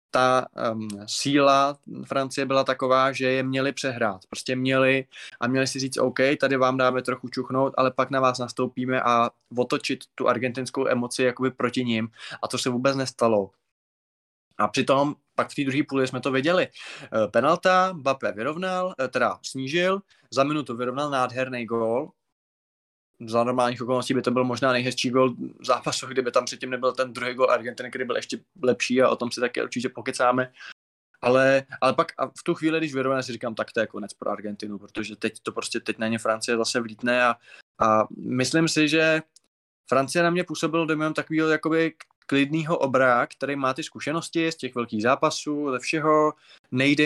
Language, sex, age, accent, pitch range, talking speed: Czech, male, 20-39, native, 120-140 Hz, 180 wpm